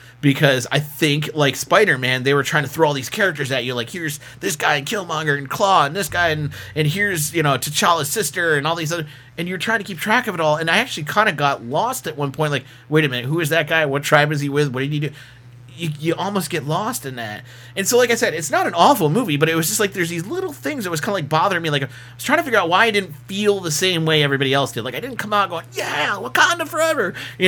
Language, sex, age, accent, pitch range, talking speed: English, male, 30-49, American, 140-185 Hz, 295 wpm